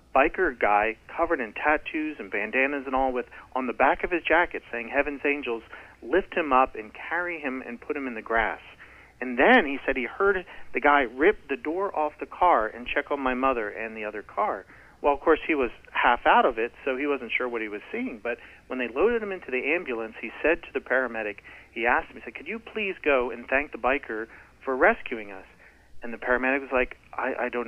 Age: 40-59